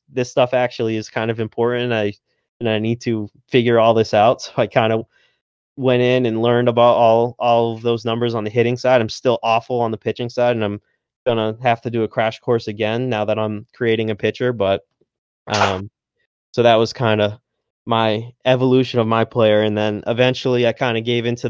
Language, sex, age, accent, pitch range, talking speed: English, male, 20-39, American, 105-115 Hz, 220 wpm